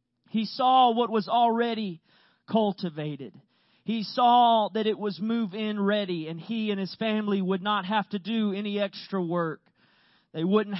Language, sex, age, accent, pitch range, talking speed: English, male, 40-59, American, 185-225 Hz, 155 wpm